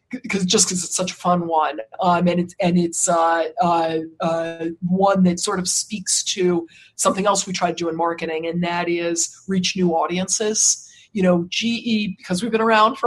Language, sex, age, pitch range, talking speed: English, female, 40-59, 175-210 Hz, 200 wpm